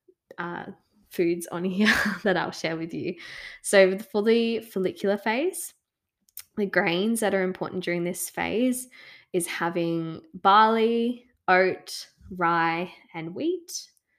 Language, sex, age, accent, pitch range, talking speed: English, female, 20-39, Australian, 170-200 Hz, 125 wpm